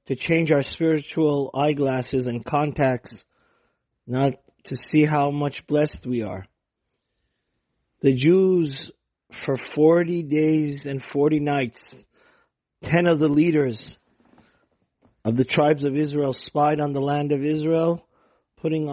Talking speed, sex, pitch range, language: 125 wpm, male, 130-155 Hz, English